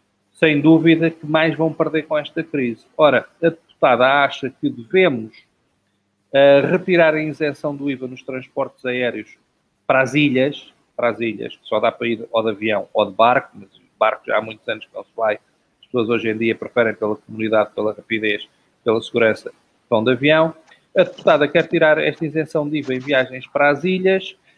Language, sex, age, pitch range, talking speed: Portuguese, male, 40-59, 130-180 Hz, 190 wpm